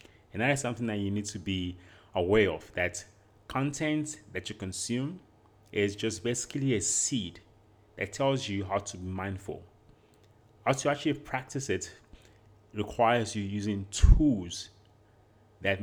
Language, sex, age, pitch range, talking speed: English, male, 30-49, 95-115 Hz, 145 wpm